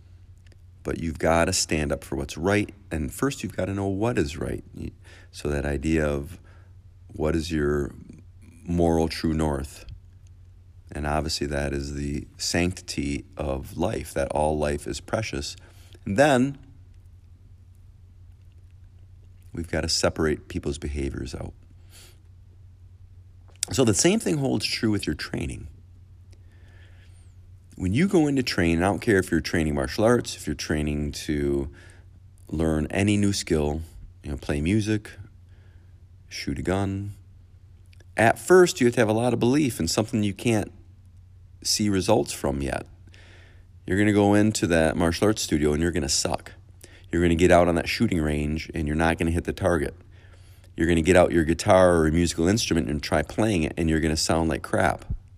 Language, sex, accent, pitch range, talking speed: English, male, American, 80-95 Hz, 165 wpm